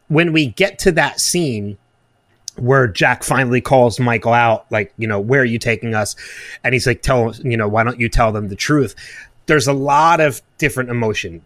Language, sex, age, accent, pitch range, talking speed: English, male, 30-49, American, 115-140 Hz, 205 wpm